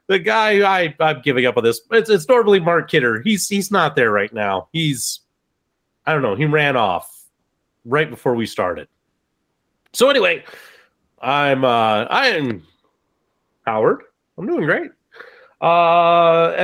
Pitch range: 125-190 Hz